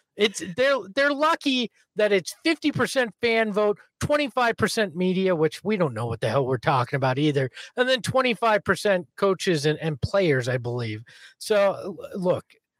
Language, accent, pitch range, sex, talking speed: English, American, 160-235 Hz, male, 155 wpm